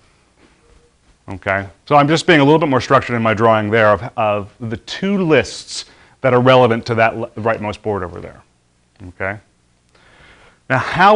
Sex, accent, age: male, American, 30-49